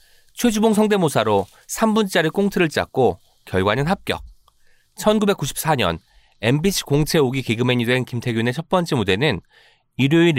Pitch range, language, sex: 120-175 Hz, Korean, male